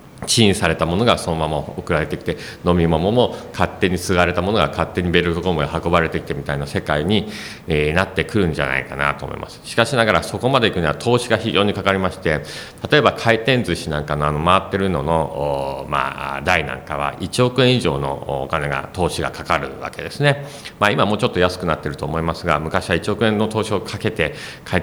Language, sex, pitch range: Japanese, male, 80-110 Hz